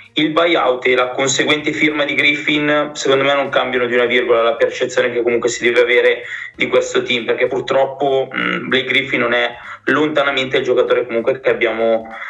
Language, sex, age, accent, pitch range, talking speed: Italian, male, 20-39, native, 125-180 Hz, 180 wpm